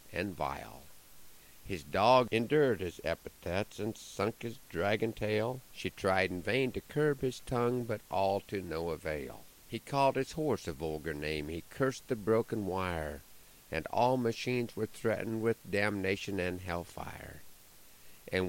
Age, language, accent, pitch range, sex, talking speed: 50-69, English, American, 85-115 Hz, male, 155 wpm